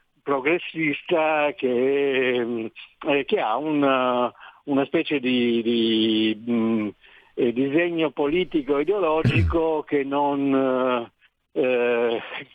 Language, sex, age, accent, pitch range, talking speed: Italian, male, 60-79, native, 120-150 Hz, 75 wpm